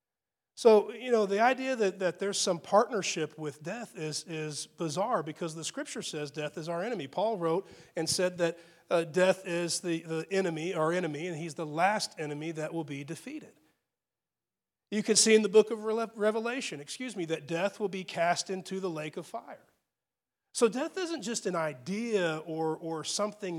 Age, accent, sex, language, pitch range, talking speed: 40-59, American, male, English, 165-220 Hz, 190 wpm